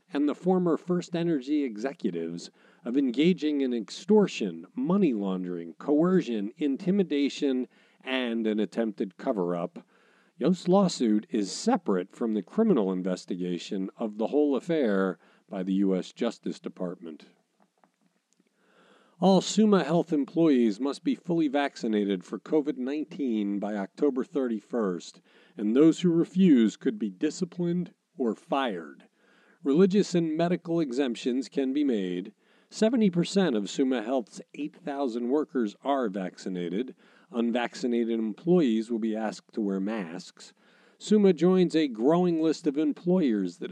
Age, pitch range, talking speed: 50-69, 105-170 Hz, 120 wpm